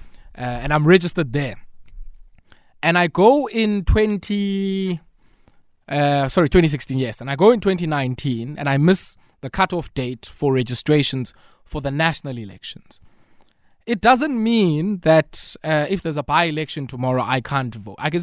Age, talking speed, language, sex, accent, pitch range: 20-39, 150 wpm, English, male, South African, 130-185 Hz